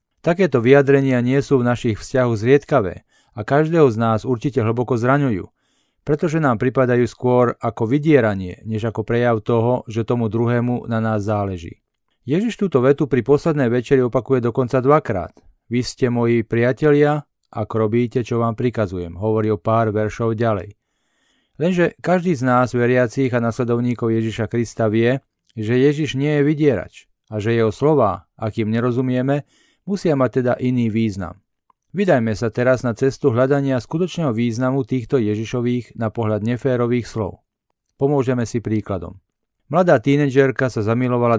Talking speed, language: 145 wpm, Slovak